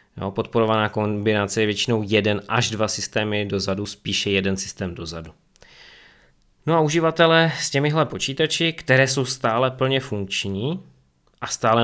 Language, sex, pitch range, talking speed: Czech, male, 95-120 Hz, 130 wpm